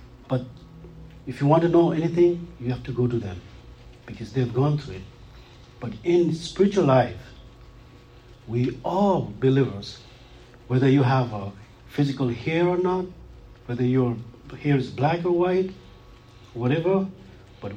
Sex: male